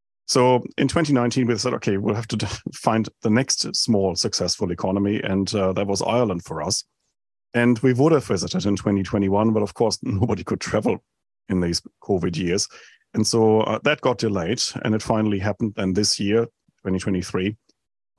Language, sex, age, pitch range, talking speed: English, male, 40-59, 100-120 Hz, 175 wpm